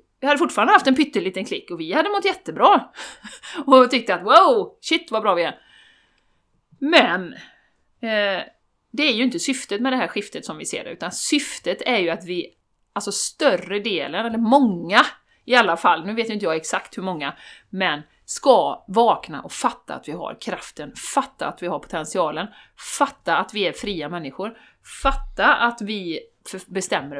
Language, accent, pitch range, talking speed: Swedish, native, 185-285 Hz, 180 wpm